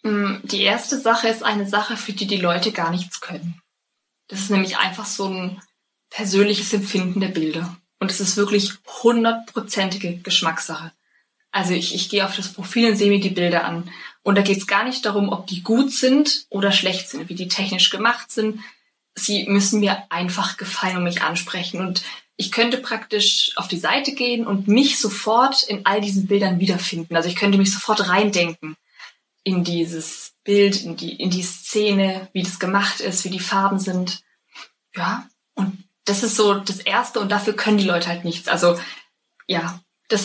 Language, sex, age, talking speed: German, female, 20-39, 185 wpm